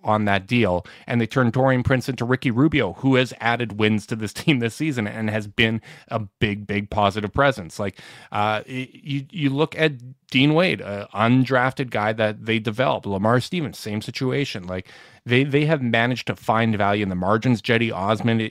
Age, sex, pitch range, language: 30-49, male, 105-135 Hz, English